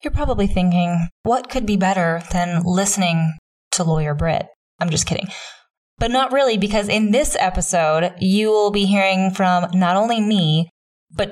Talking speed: 165 wpm